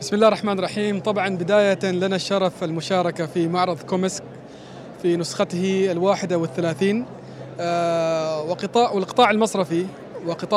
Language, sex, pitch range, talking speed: Arabic, male, 185-225 Hz, 120 wpm